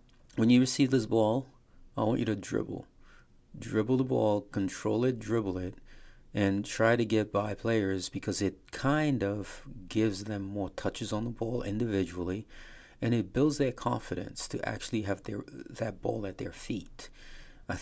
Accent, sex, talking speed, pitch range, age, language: American, male, 170 wpm, 100-120 Hz, 40-59, English